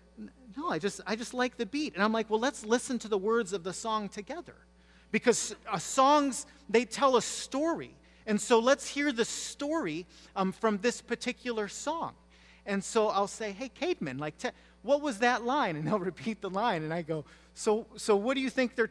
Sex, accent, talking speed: male, American, 210 wpm